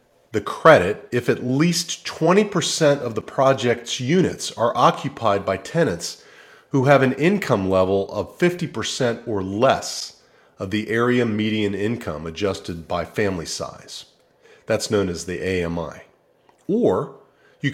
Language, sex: English, male